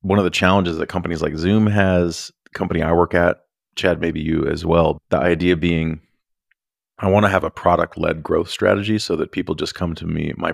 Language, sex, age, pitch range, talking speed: English, male, 30-49, 85-95 Hz, 215 wpm